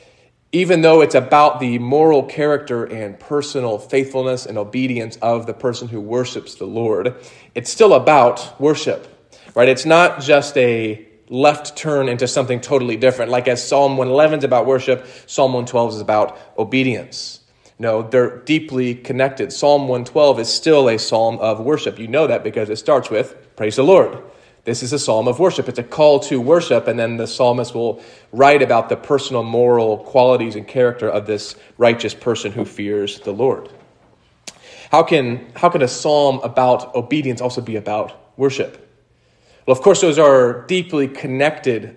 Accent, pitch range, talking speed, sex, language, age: American, 120-145 Hz, 170 wpm, male, English, 30-49